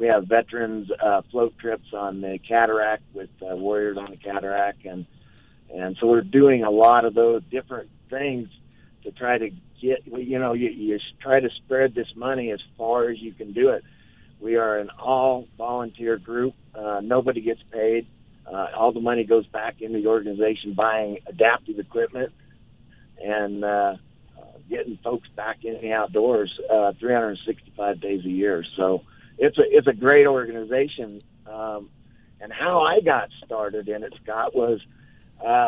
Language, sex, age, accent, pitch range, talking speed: English, male, 50-69, American, 105-125 Hz, 165 wpm